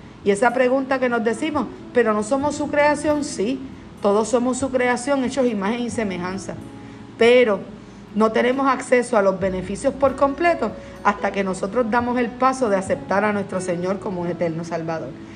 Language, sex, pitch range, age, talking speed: Spanish, female, 195-270 Hz, 50-69, 170 wpm